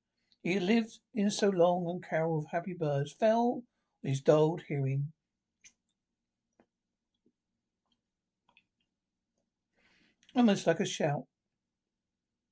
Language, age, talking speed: English, 60-79, 90 wpm